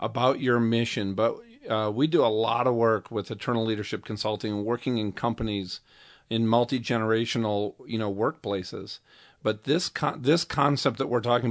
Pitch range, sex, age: 110-130 Hz, male, 40-59